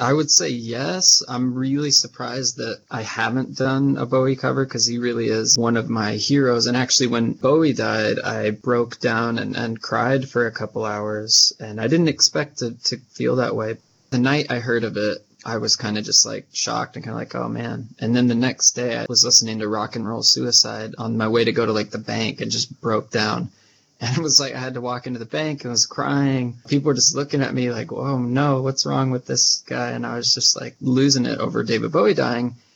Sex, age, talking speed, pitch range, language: male, 20-39, 240 wpm, 110-130 Hz, English